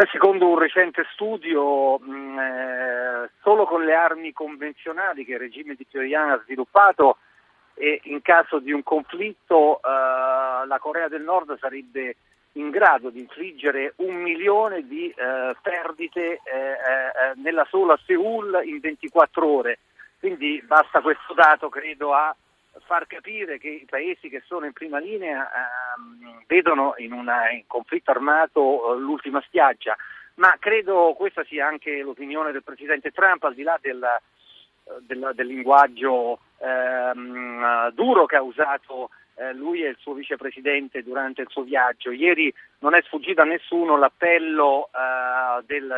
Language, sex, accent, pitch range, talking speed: Italian, male, native, 130-180 Hz, 145 wpm